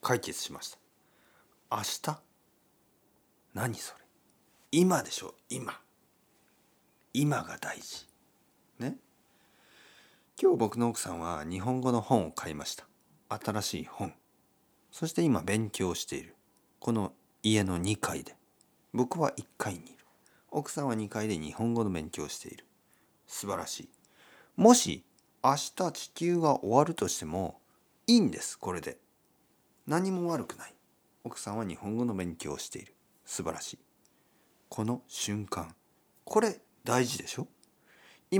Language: Japanese